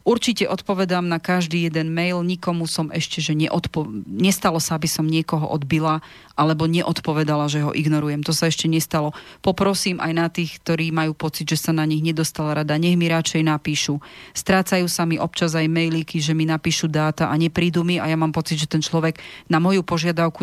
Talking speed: 195 wpm